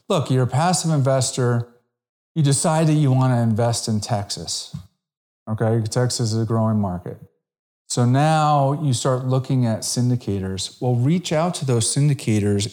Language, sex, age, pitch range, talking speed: English, male, 40-59, 115-160 Hz, 155 wpm